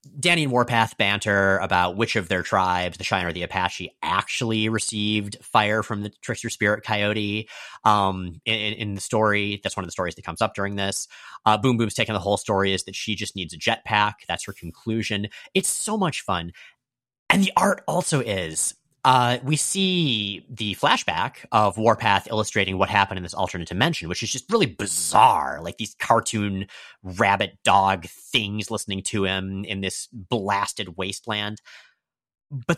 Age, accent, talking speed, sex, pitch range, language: 30-49, American, 175 wpm, male, 95-125 Hz, English